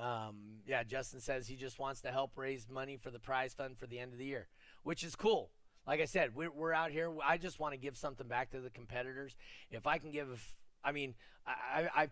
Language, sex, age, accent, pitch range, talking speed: English, male, 30-49, American, 95-135 Hz, 255 wpm